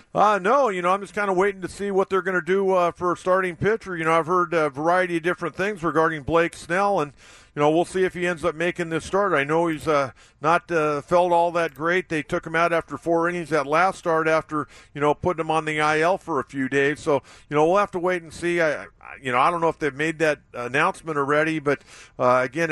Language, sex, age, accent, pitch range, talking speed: English, male, 50-69, American, 150-175 Hz, 260 wpm